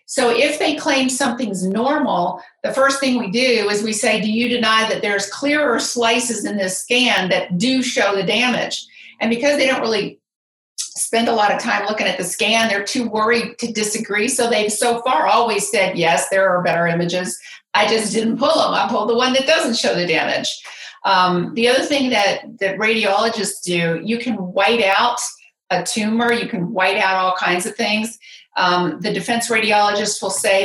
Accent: American